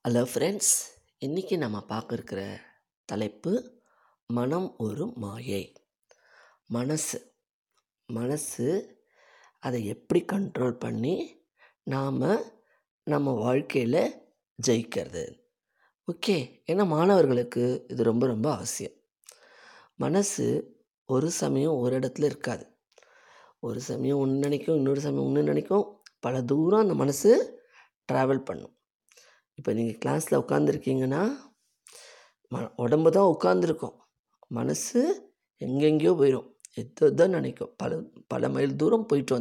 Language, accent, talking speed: Tamil, native, 95 wpm